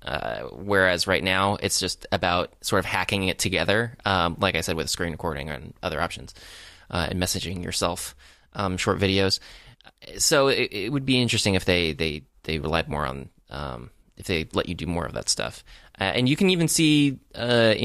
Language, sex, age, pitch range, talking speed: English, male, 20-39, 85-105 Hz, 200 wpm